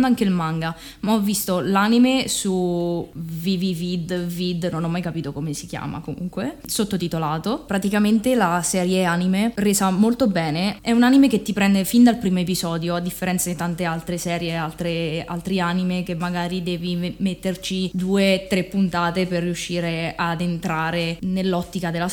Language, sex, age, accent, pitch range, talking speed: Italian, female, 20-39, native, 175-200 Hz, 155 wpm